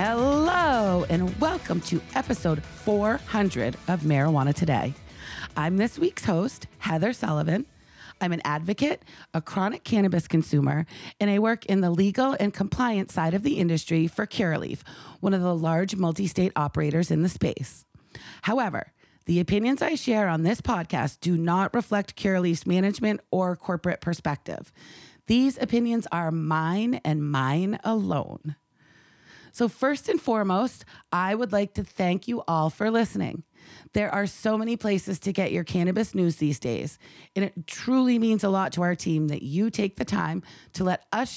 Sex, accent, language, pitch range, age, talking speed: female, American, English, 170-220 Hz, 30-49, 160 wpm